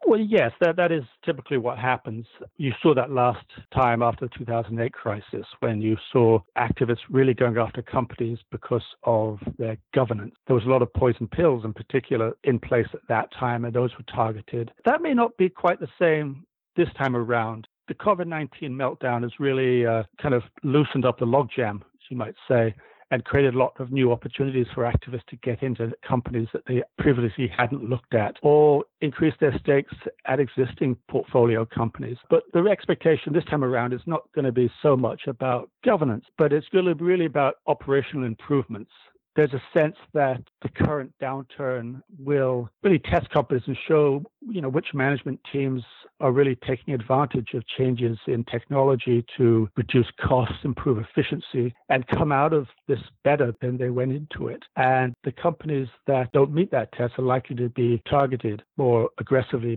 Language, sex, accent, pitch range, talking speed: English, male, British, 120-145 Hz, 180 wpm